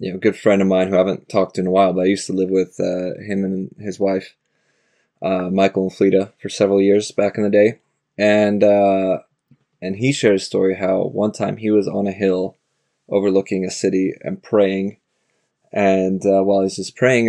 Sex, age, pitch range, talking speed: male, 20-39, 95-100 Hz, 220 wpm